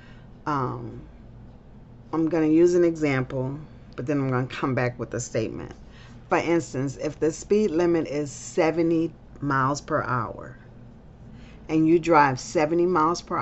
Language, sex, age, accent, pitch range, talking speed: English, female, 40-59, American, 135-170 Hz, 150 wpm